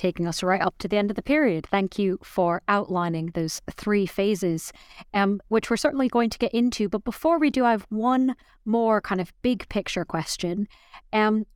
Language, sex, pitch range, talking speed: English, female, 175-220 Hz, 200 wpm